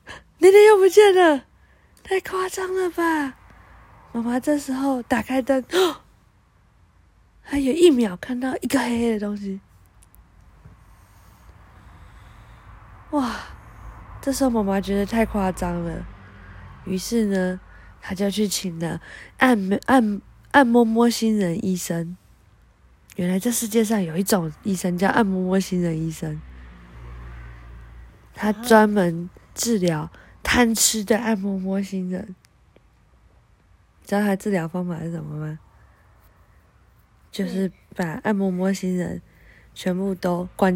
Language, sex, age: Chinese, female, 20-39